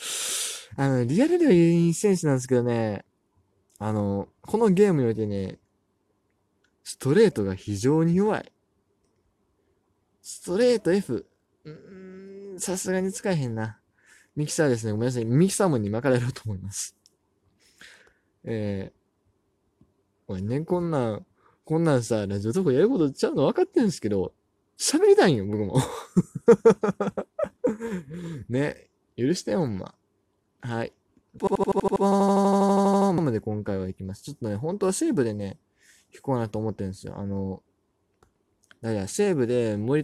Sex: male